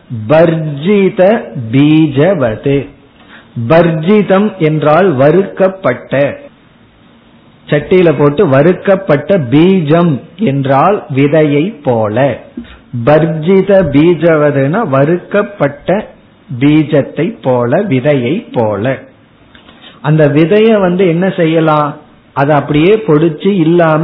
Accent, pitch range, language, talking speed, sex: native, 145-190 Hz, Tamil, 55 wpm, male